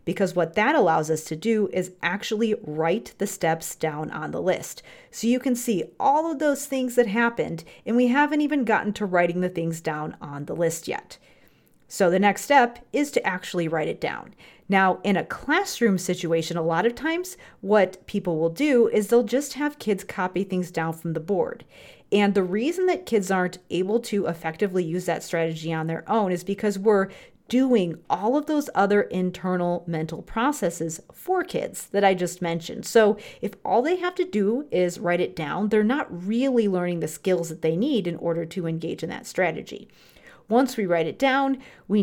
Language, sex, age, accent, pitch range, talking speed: English, female, 30-49, American, 170-230 Hz, 200 wpm